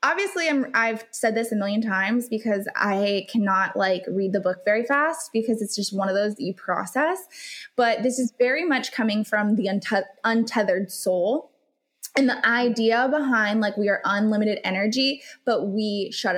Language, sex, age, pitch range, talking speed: English, female, 20-39, 200-250 Hz, 170 wpm